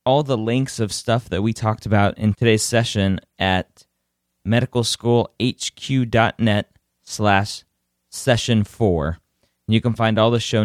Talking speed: 125 wpm